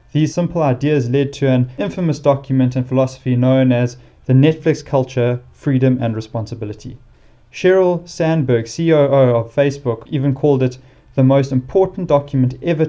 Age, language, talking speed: 30-49, English, 145 wpm